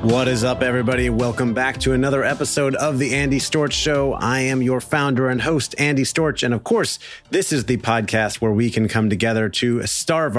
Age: 30-49